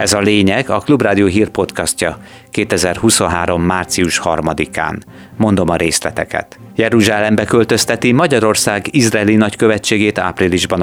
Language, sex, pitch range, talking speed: Hungarian, male, 90-110 Hz, 100 wpm